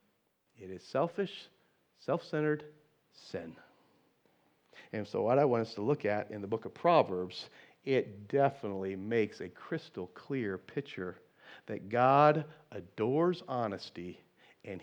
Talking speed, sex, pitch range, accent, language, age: 125 wpm, male, 110-145 Hz, American, English, 50-69